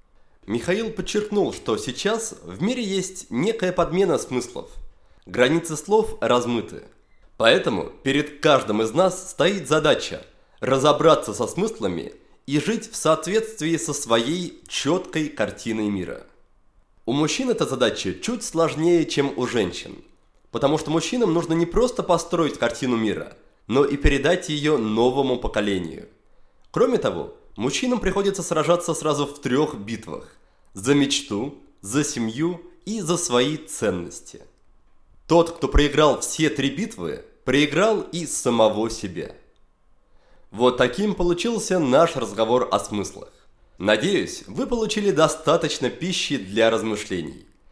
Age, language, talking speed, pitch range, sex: 20-39, Russian, 125 wpm, 125-185 Hz, male